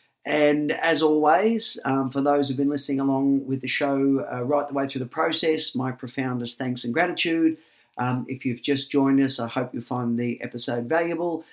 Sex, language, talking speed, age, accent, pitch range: male, English, 200 wpm, 40-59, Australian, 115-140 Hz